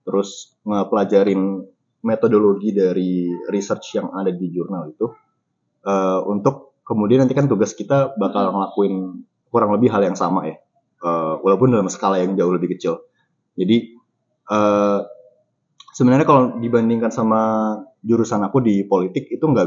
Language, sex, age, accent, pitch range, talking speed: Indonesian, male, 20-39, native, 95-125 Hz, 135 wpm